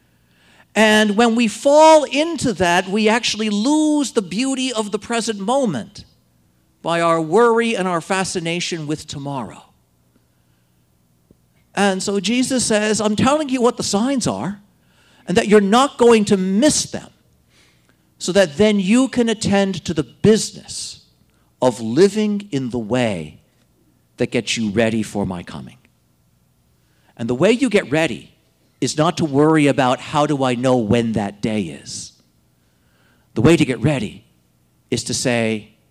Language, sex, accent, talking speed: English, male, American, 150 wpm